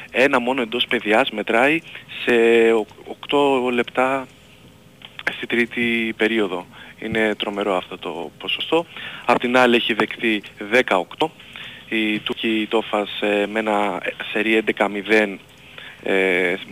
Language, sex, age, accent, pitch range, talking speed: Greek, male, 20-39, native, 100-125 Hz, 105 wpm